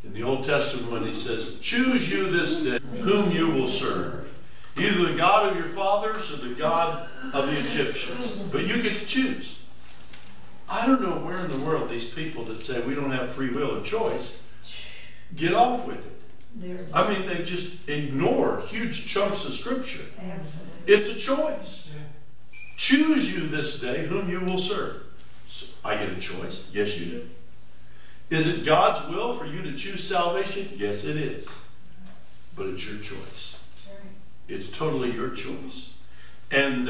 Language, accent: English, American